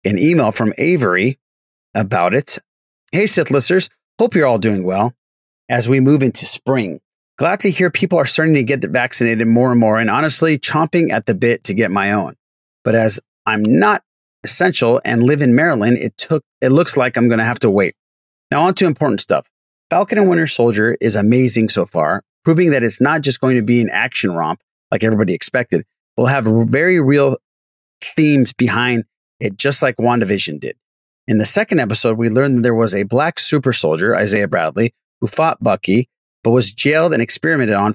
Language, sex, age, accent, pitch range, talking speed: English, male, 30-49, American, 110-145 Hz, 195 wpm